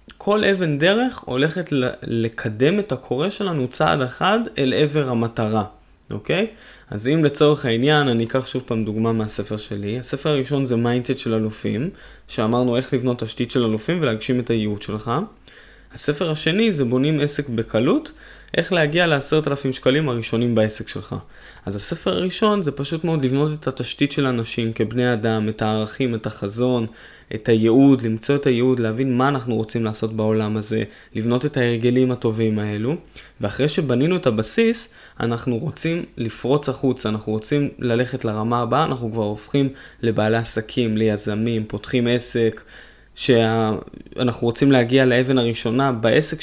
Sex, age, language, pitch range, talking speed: male, 20-39, Hebrew, 110-140 Hz, 150 wpm